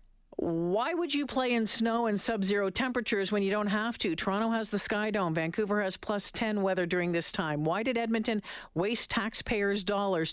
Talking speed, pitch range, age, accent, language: 190 wpm, 165-220 Hz, 50-69, American, English